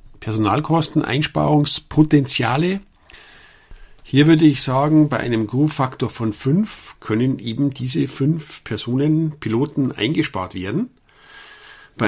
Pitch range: 110-150 Hz